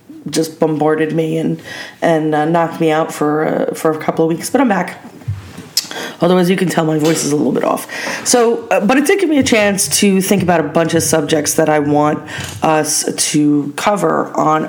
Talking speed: 215 wpm